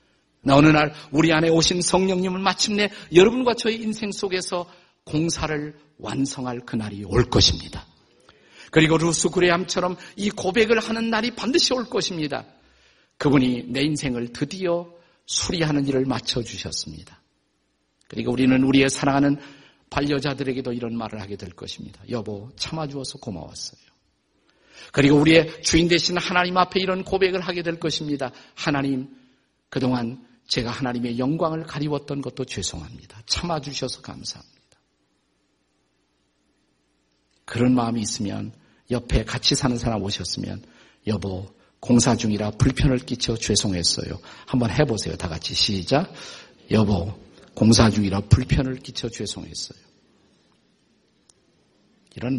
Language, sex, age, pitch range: Korean, male, 50-69, 115-165 Hz